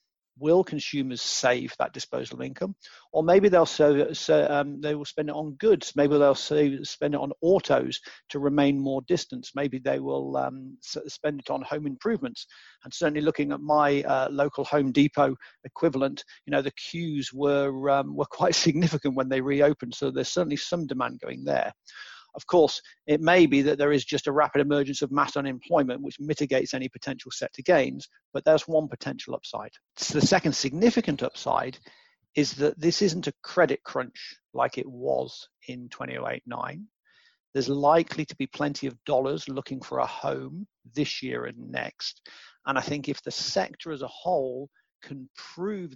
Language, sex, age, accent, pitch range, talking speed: English, male, 50-69, British, 135-155 Hz, 180 wpm